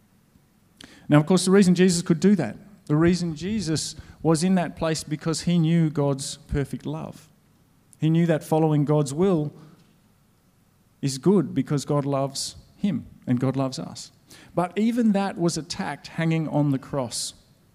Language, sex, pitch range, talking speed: English, male, 140-180 Hz, 160 wpm